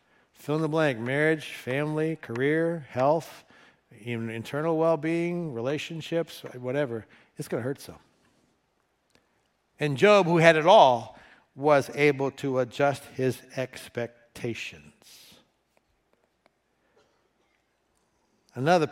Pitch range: 130-165 Hz